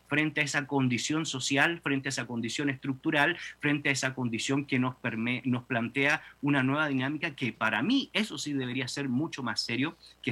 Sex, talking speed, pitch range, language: male, 185 wpm, 120-150 Hz, Spanish